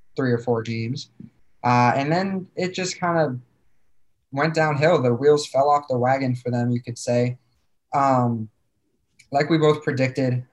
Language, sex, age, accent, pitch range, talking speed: English, male, 20-39, American, 125-140 Hz, 165 wpm